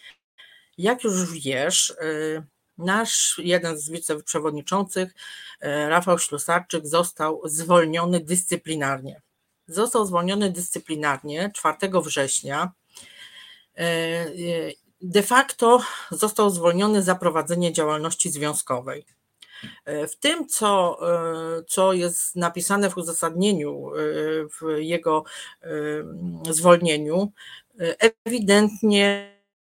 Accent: native